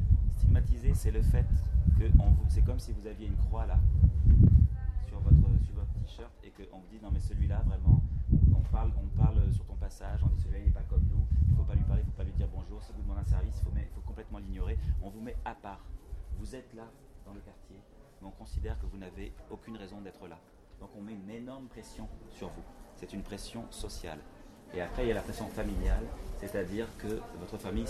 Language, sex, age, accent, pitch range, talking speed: French, male, 30-49, French, 80-105 Hz, 240 wpm